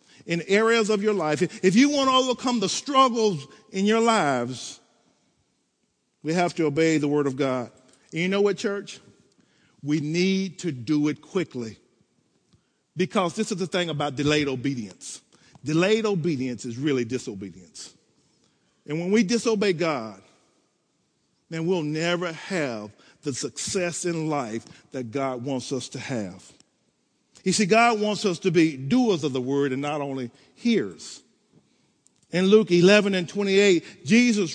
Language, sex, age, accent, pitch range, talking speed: English, male, 50-69, American, 145-215 Hz, 150 wpm